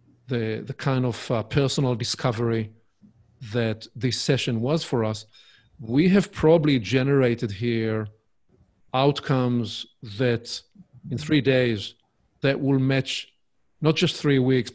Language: English